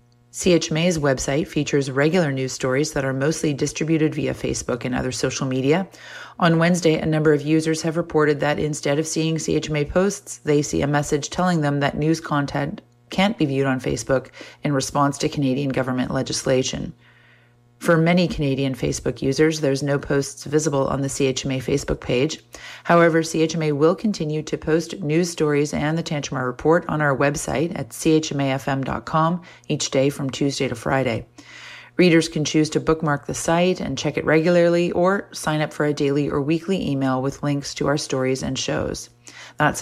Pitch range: 135-160 Hz